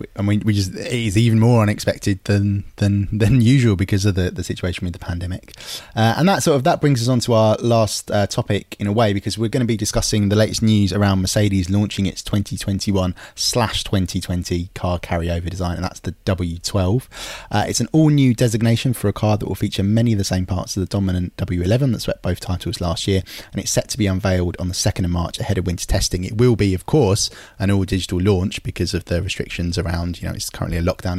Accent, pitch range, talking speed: British, 95-115 Hz, 235 wpm